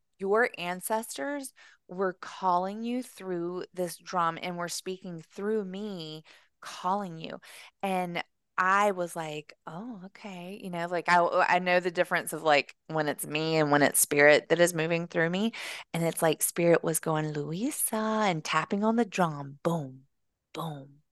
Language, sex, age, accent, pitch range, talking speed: English, female, 20-39, American, 170-205 Hz, 160 wpm